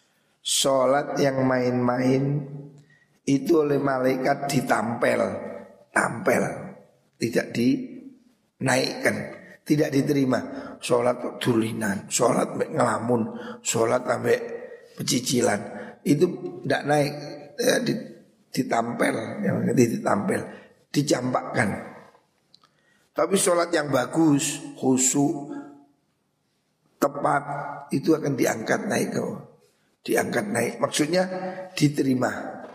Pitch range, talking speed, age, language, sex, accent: 130-160 Hz, 75 wpm, 60-79, Indonesian, male, native